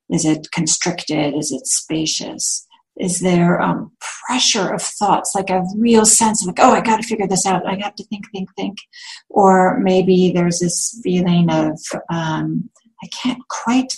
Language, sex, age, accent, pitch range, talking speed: English, female, 50-69, American, 180-240 Hz, 175 wpm